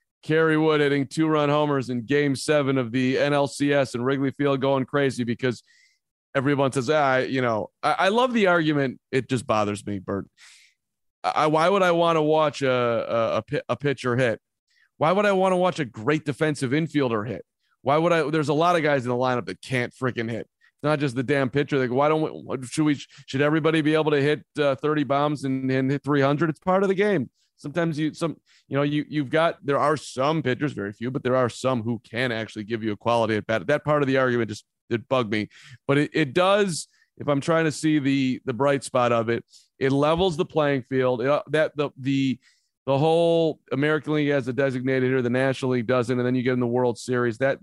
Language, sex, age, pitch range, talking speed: English, male, 30-49, 125-150 Hz, 230 wpm